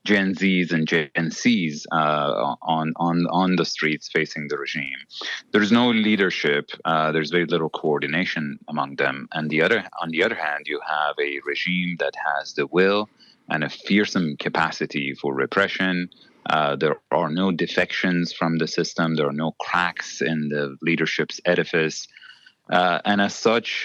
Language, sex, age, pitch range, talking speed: English, male, 30-49, 75-95 Hz, 165 wpm